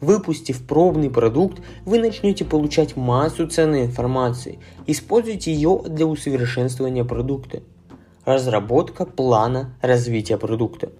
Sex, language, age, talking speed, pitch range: male, Russian, 20-39, 100 wpm, 120-160 Hz